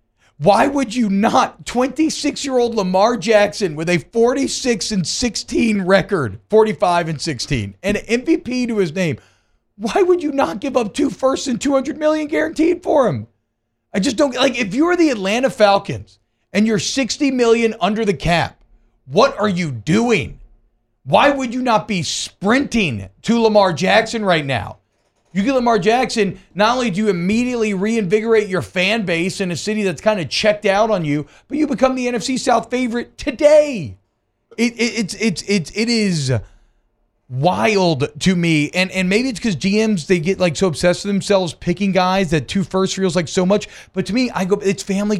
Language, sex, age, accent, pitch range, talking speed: English, male, 40-59, American, 160-235 Hz, 175 wpm